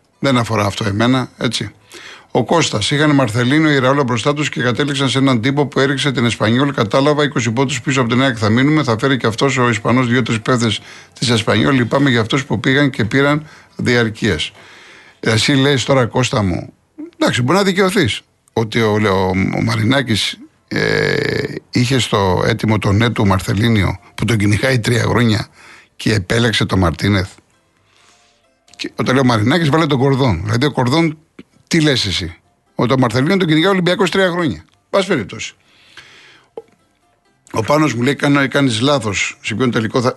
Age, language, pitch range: 60-79, Greek, 115-145 Hz